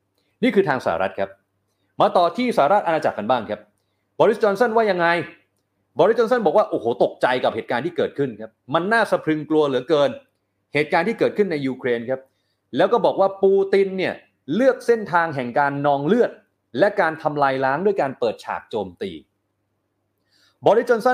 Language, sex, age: Thai, male, 30-49